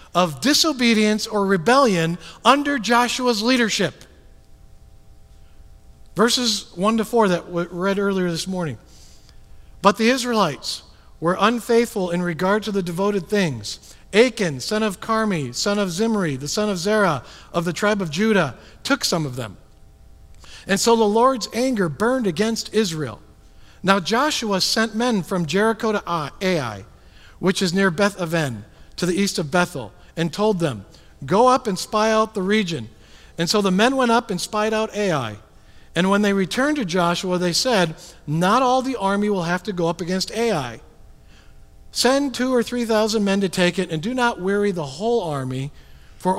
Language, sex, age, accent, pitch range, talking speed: English, male, 50-69, American, 160-220 Hz, 170 wpm